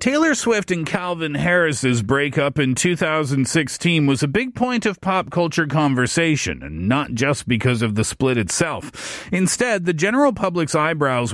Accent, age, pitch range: American, 40-59, 135-180 Hz